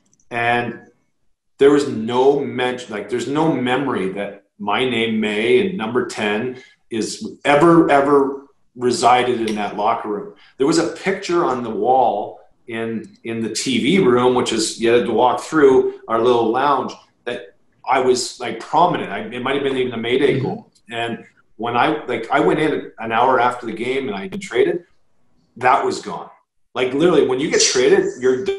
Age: 40-59